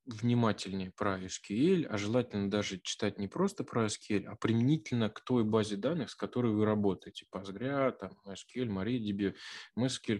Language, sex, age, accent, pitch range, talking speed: Russian, male, 20-39, native, 105-130 Hz, 155 wpm